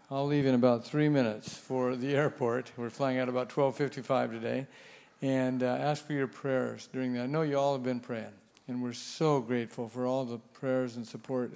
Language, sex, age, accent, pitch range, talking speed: English, male, 50-69, American, 125-145 Hz, 210 wpm